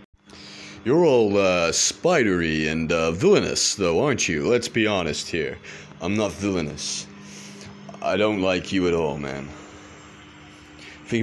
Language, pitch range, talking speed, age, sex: English, 85-105 Hz, 135 wpm, 30-49, male